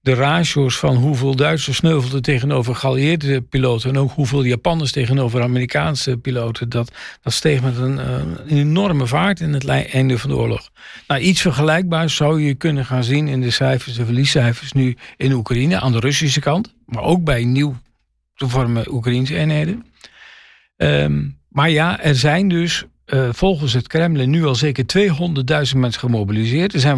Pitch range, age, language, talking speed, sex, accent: 130-160 Hz, 50-69, Dutch, 170 wpm, male, Dutch